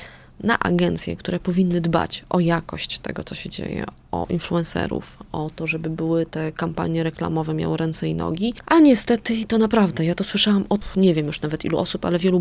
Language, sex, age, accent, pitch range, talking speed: Polish, female, 20-39, native, 165-220 Hz, 195 wpm